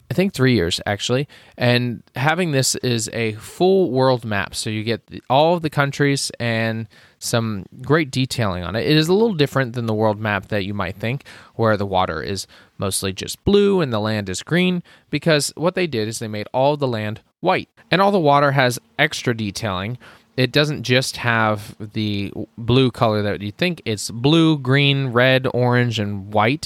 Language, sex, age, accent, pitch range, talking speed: English, male, 20-39, American, 105-130 Hz, 195 wpm